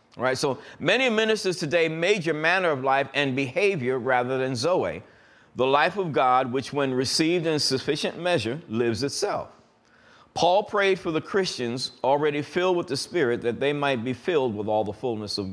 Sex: male